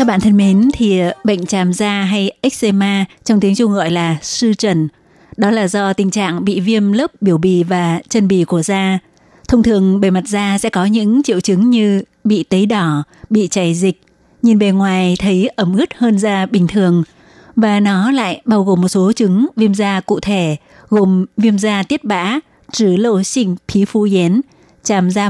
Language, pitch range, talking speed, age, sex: Vietnamese, 190-225 Hz, 200 wpm, 20-39, female